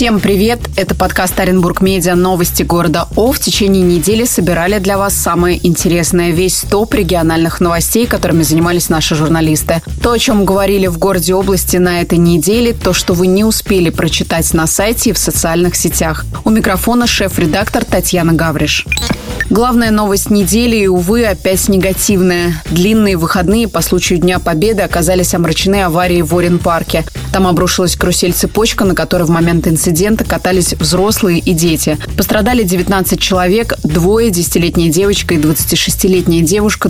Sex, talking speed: female, 145 wpm